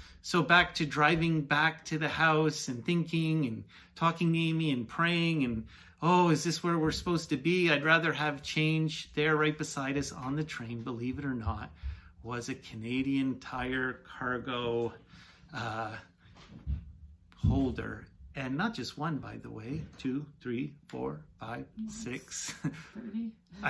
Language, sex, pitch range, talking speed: English, male, 115-155 Hz, 140 wpm